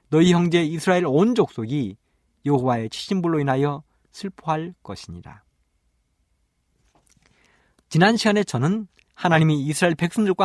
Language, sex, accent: Korean, male, native